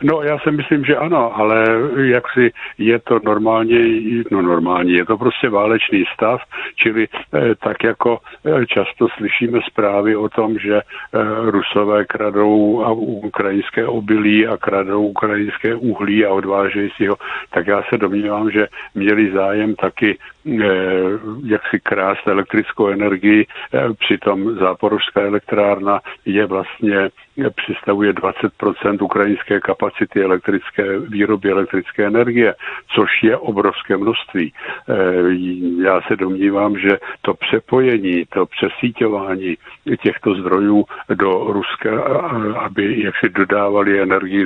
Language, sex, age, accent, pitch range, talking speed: Czech, male, 60-79, native, 95-110 Hz, 125 wpm